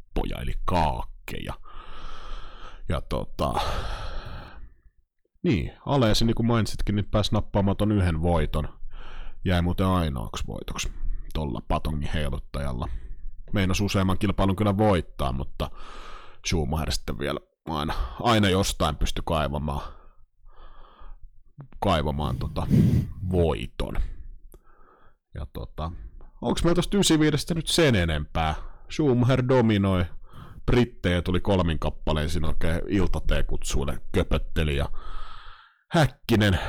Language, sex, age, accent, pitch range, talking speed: Finnish, male, 30-49, native, 75-110 Hz, 100 wpm